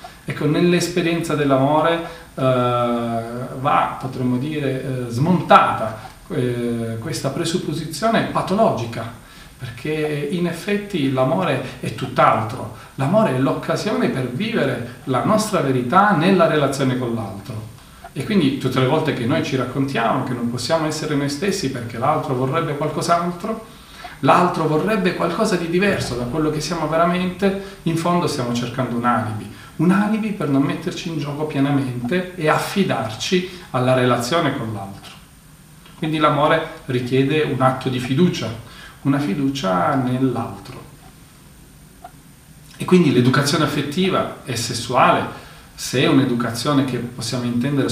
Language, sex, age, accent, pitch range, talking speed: Italian, male, 40-59, native, 125-170 Hz, 130 wpm